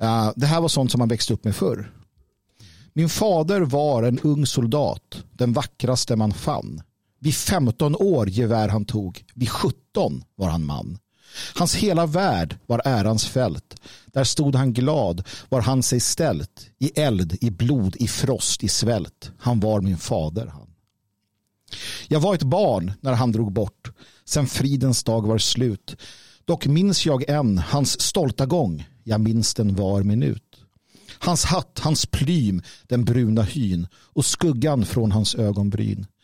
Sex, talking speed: male, 155 wpm